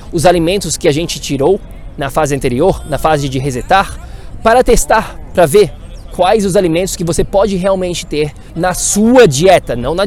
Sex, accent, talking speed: male, Brazilian, 180 wpm